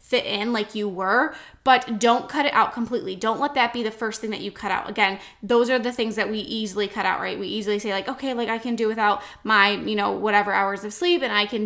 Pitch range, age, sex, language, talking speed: 205-245 Hz, 10-29, female, English, 275 wpm